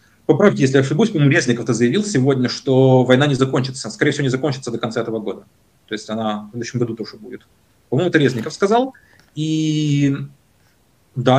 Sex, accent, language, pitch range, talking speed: male, native, Ukrainian, 115-140 Hz, 180 wpm